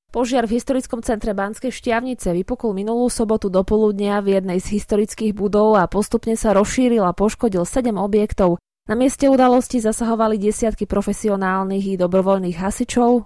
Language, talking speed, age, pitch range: Slovak, 145 wpm, 20-39, 185-230 Hz